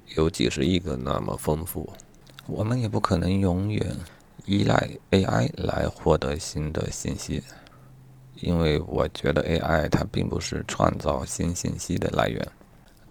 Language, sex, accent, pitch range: Chinese, male, native, 75-95 Hz